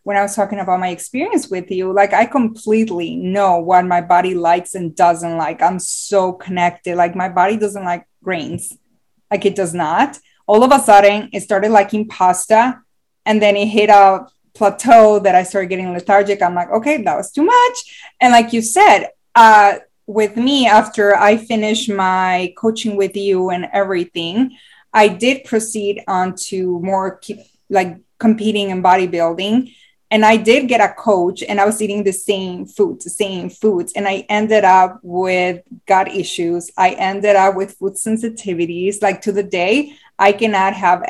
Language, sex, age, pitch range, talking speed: English, female, 20-39, 185-225 Hz, 175 wpm